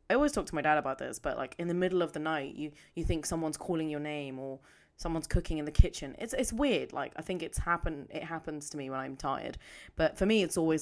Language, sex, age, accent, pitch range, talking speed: English, female, 20-39, British, 145-175 Hz, 270 wpm